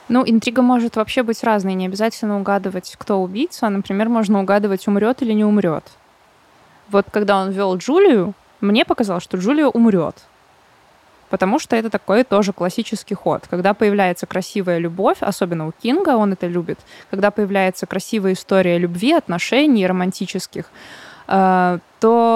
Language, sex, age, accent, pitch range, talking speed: Russian, female, 20-39, native, 185-225 Hz, 145 wpm